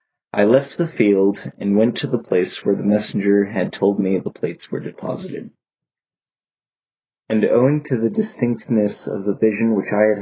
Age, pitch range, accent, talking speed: 20-39, 100-115 Hz, American, 175 wpm